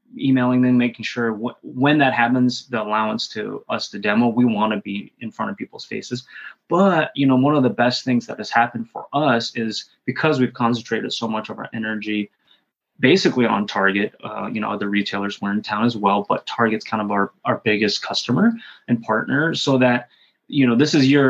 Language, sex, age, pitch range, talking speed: English, male, 20-39, 115-130 Hz, 210 wpm